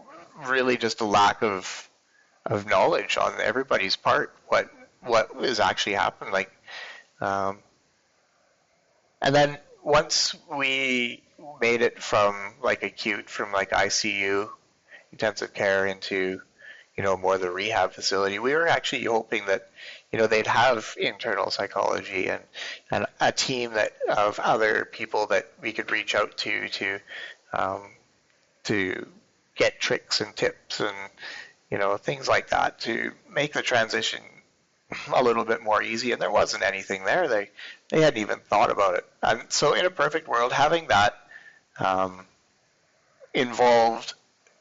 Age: 30-49